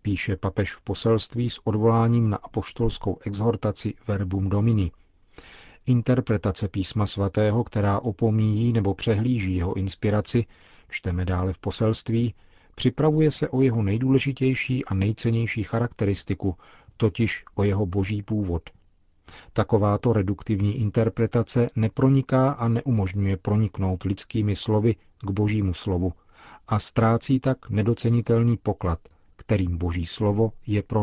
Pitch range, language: 95-115 Hz, Czech